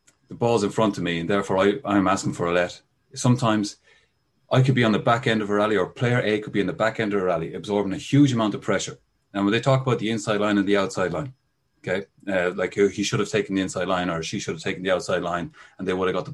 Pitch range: 100-135 Hz